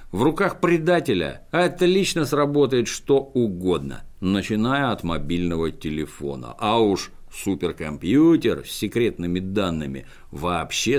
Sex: male